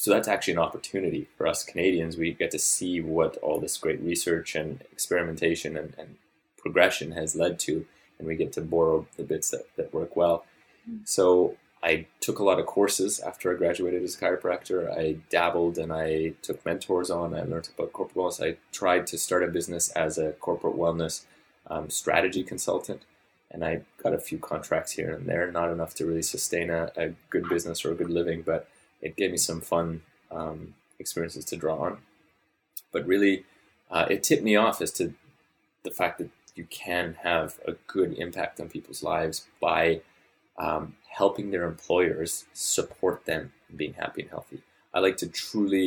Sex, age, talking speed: male, 20-39, 190 wpm